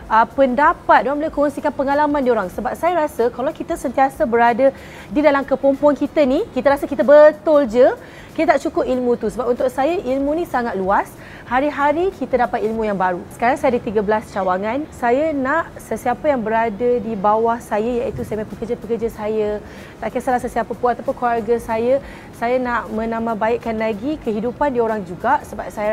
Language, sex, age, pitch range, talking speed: Malay, female, 30-49, 230-275 Hz, 180 wpm